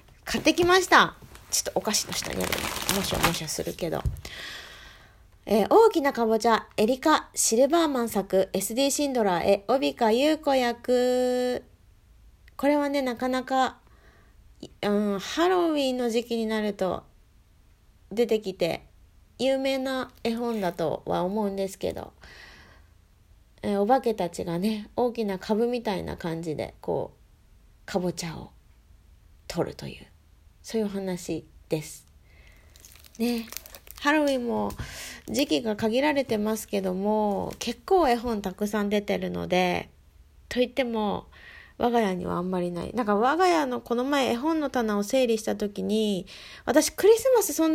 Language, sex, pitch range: Japanese, female, 175-260 Hz